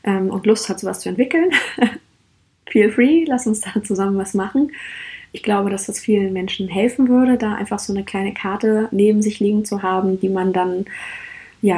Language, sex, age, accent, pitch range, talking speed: German, female, 20-39, German, 195-230 Hz, 190 wpm